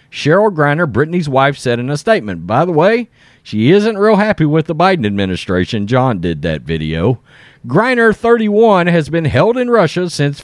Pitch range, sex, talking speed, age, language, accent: 135-210 Hz, male, 180 wpm, 40-59, English, American